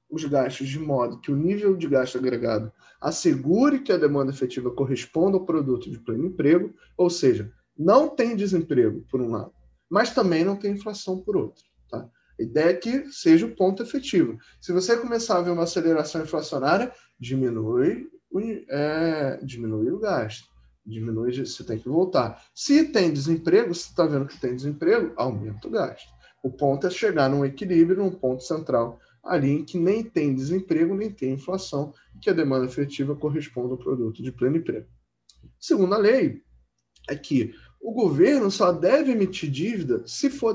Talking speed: 170 wpm